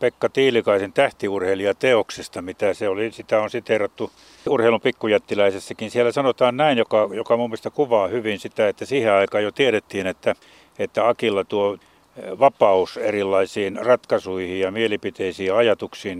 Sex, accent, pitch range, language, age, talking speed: male, native, 100-125 Hz, Finnish, 60-79, 135 wpm